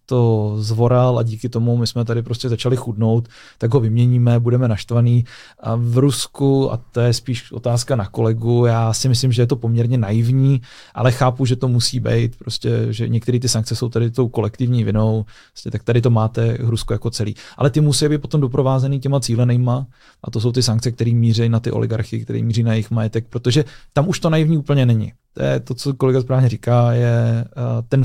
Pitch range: 115-130 Hz